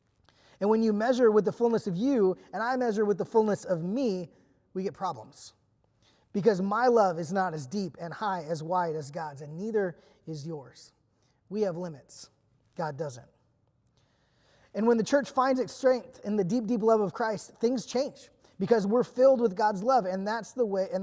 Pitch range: 175-230 Hz